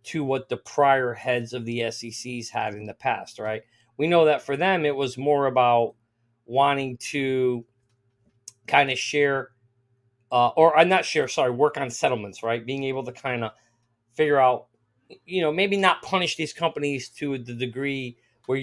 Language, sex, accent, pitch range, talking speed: English, male, American, 120-155 Hz, 175 wpm